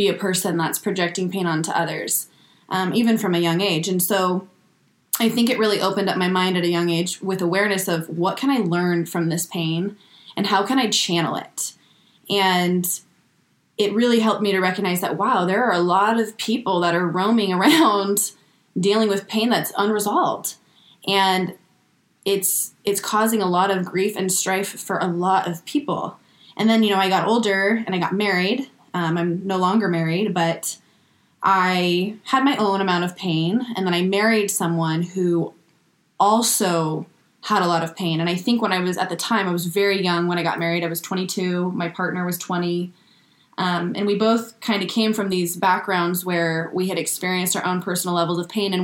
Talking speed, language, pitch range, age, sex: 200 wpm, English, 175-205 Hz, 20-39, female